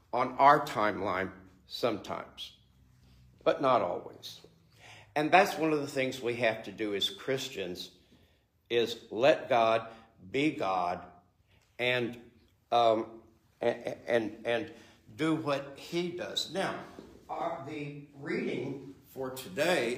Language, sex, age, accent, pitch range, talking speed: English, male, 60-79, American, 110-140 Hz, 115 wpm